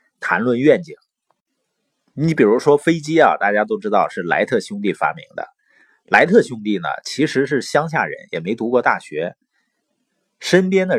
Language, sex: Chinese, male